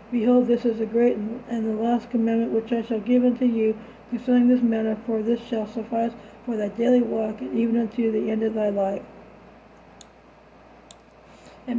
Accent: American